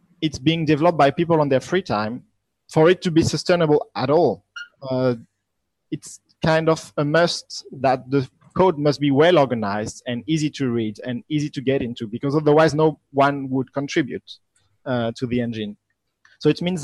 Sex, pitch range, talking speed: male, 120-155 Hz, 180 wpm